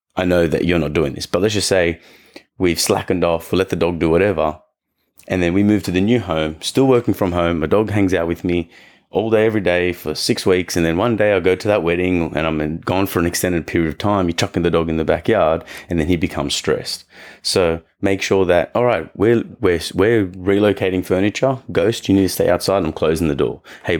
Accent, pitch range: Australian, 85-95 Hz